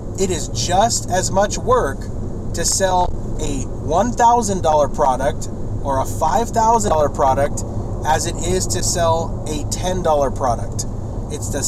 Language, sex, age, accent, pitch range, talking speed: English, male, 30-49, American, 100-115 Hz, 130 wpm